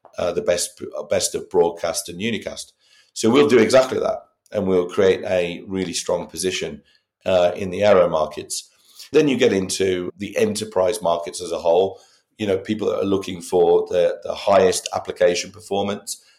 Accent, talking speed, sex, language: British, 170 wpm, male, English